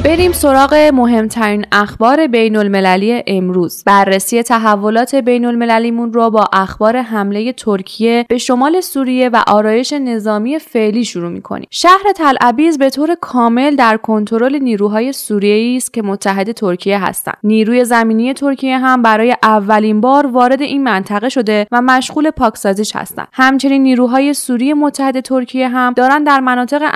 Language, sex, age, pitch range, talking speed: Persian, female, 10-29, 225-270 Hz, 140 wpm